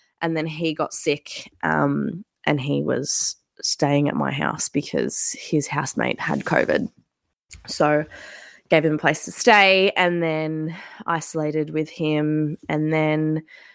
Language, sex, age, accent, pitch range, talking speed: English, female, 20-39, Australian, 155-195 Hz, 140 wpm